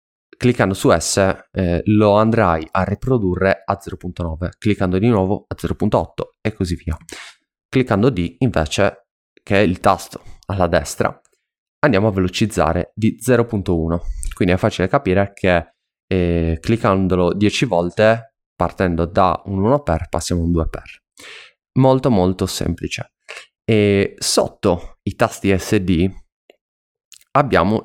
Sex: male